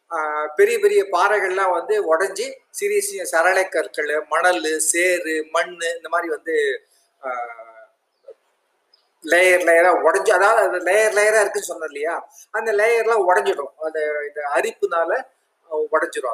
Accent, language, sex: native, Tamil, male